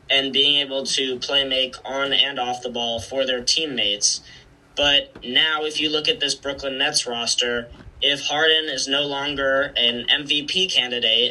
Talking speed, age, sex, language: 170 wpm, 10-29, male, English